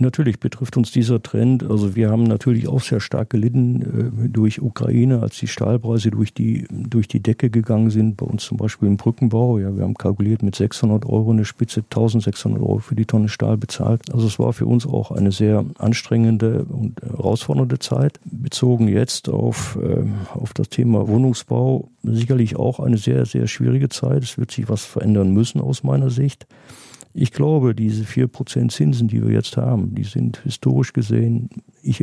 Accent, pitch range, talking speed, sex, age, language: German, 110-125 Hz, 180 wpm, male, 50-69, German